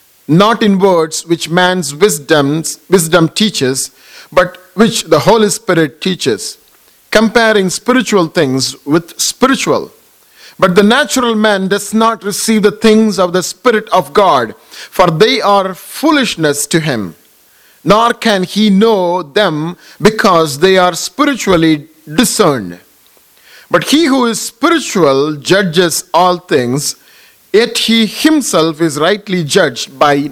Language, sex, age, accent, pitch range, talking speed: English, male, 50-69, Indian, 160-225 Hz, 125 wpm